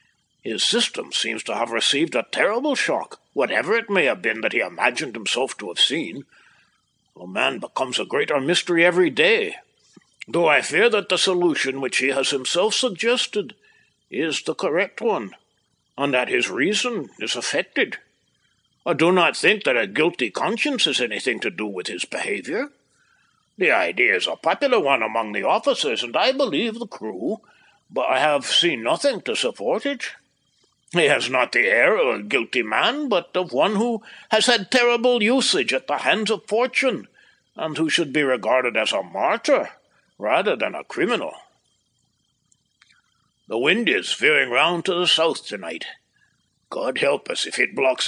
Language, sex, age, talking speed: English, male, 60-79, 170 wpm